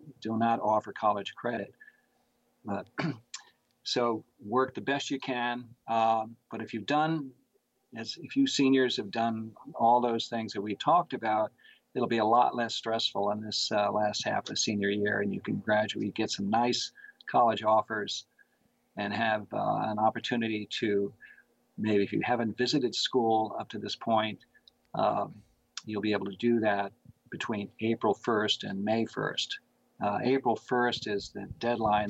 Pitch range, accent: 105-120 Hz, American